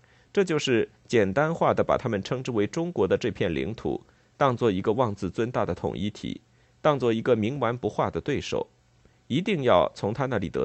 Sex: male